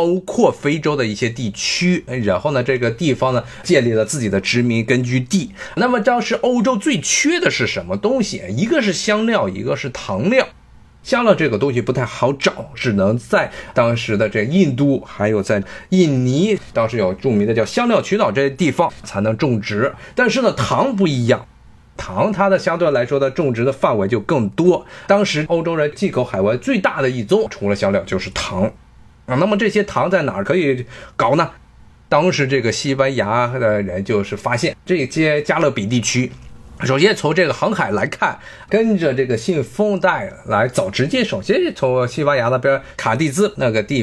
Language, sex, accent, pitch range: Chinese, male, native, 120-190 Hz